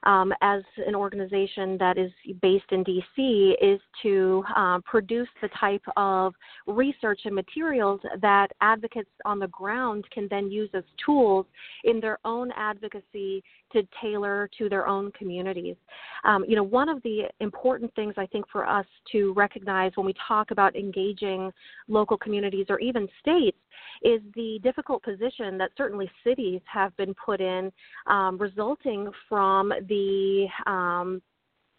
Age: 30-49